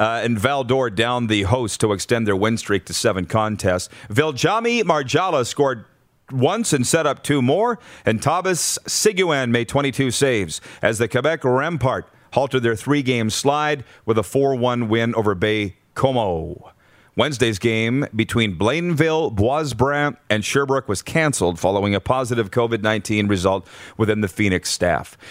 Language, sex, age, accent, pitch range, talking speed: English, male, 40-59, American, 115-150 Hz, 145 wpm